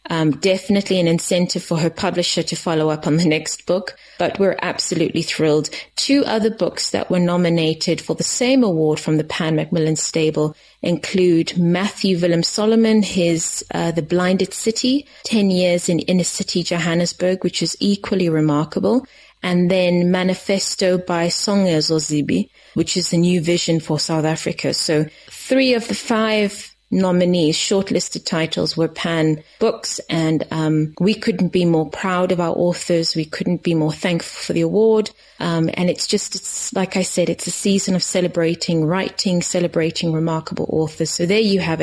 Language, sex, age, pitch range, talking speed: English, female, 30-49, 165-200 Hz, 165 wpm